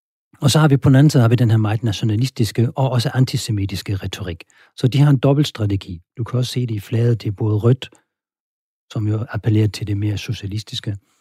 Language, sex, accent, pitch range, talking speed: Danish, male, native, 105-135 Hz, 220 wpm